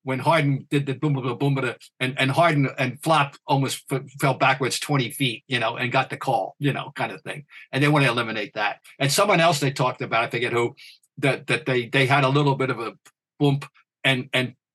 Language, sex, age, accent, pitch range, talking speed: English, male, 50-69, American, 130-155 Hz, 225 wpm